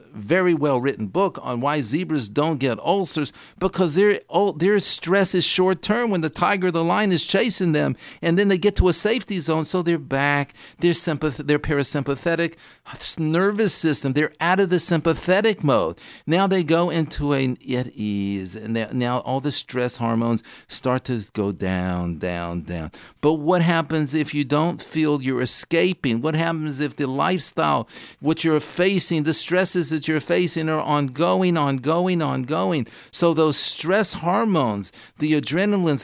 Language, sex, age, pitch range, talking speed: English, male, 50-69, 135-175 Hz, 165 wpm